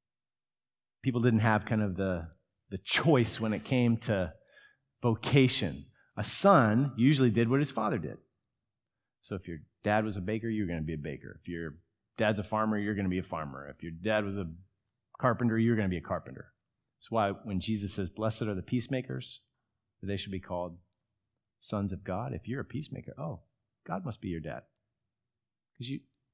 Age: 40-59